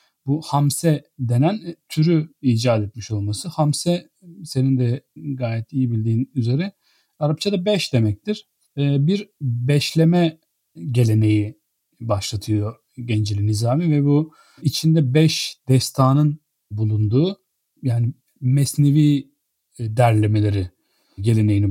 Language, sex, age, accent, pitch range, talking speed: Turkish, male, 40-59, native, 110-145 Hz, 90 wpm